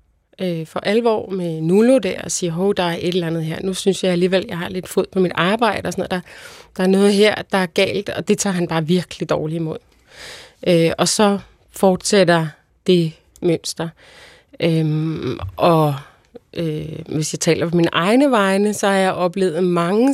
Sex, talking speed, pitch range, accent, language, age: female, 200 wpm, 165-195 Hz, native, Danish, 30-49